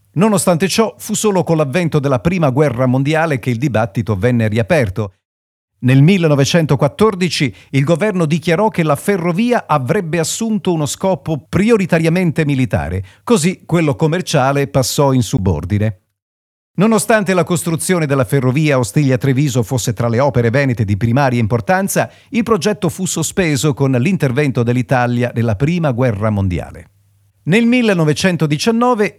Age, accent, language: 40-59, native, Italian